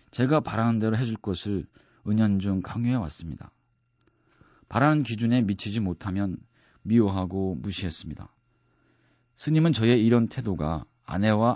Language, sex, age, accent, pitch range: Korean, male, 40-59, native, 95-120 Hz